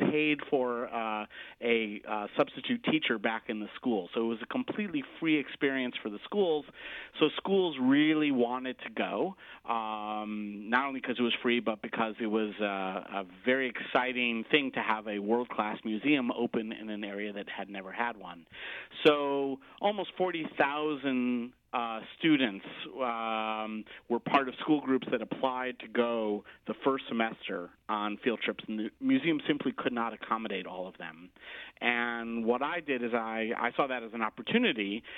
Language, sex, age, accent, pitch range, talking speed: English, male, 40-59, American, 110-135 Hz, 170 wpm